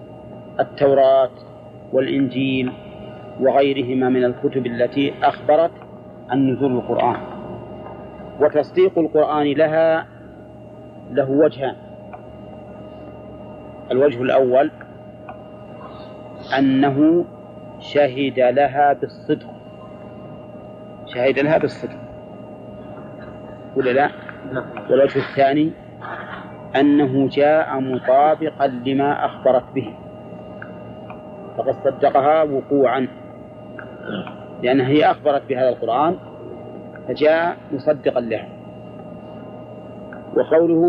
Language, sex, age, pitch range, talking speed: Arabic, male, 40-59, 125-150 Hz, 70 wpm